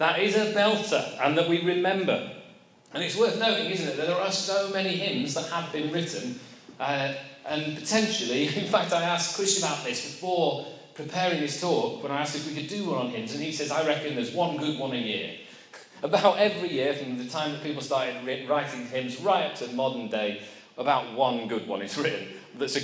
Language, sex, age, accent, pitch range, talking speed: English, male, 40-59, British, 130-180 Hz, 220 wpm